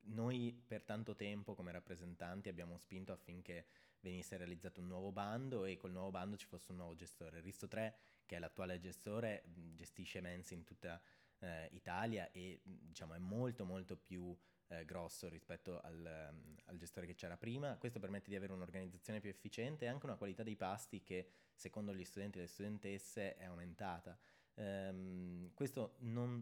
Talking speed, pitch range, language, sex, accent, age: 175 wpm, 90-110 Hz, Italian, male, native, 20-39